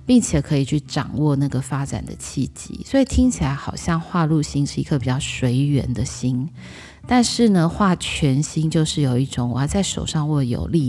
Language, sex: Chinese, female